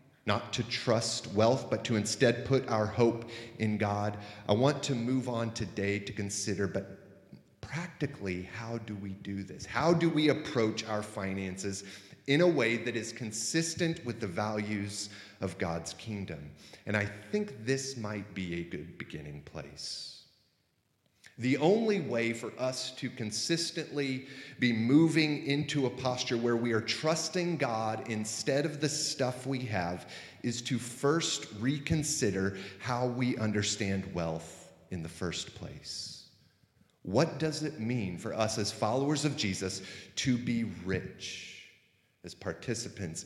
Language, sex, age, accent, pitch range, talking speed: English, male, 30-49, American, 100-130 Hz, 145 wpm